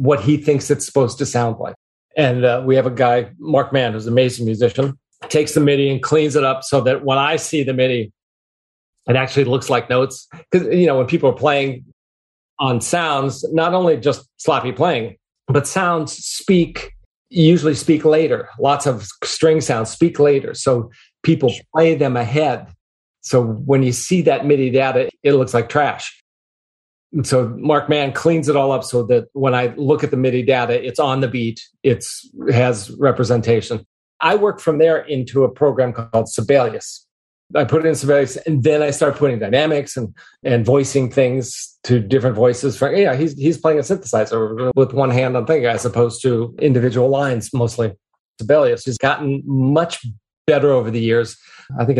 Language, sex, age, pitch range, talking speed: English, male, 40-59, 120-150 Hz, 185 wpm